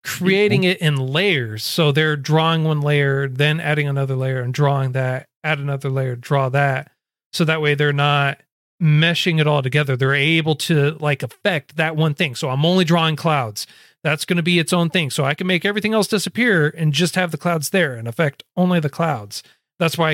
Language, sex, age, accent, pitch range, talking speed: English, male, 40-59, American, 140-175 Hz, 210 wpm